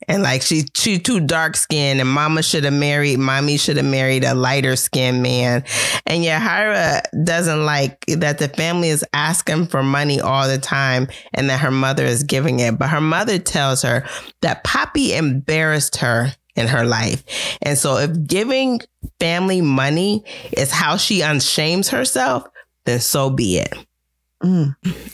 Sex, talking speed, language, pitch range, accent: female, 165 wpm, English, 135-175 Hz, American